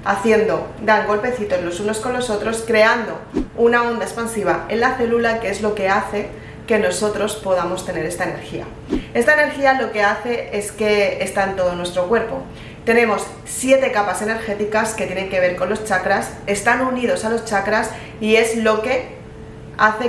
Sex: female